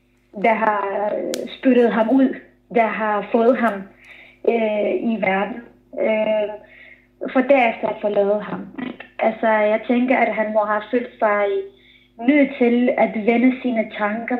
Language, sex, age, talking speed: Danish, female, 20-39, 140 wpm